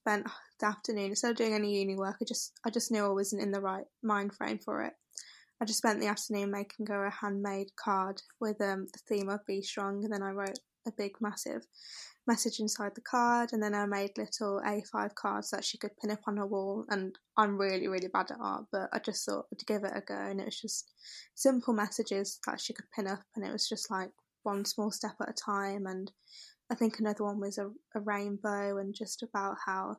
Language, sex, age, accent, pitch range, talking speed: English, female, 10-29, British, 200-220 Hz, 235 wpm